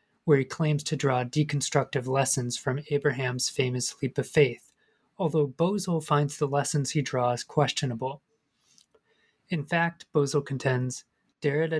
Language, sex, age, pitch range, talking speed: English, male, 30-49, 130-155 Hz, 130 wpm